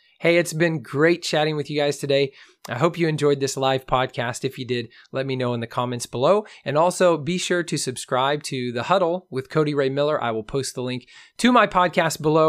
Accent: American